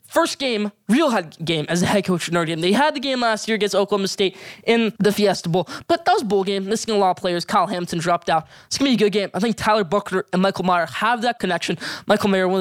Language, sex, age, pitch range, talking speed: English, male, 10-29, 175-225 Hz, 290 wpm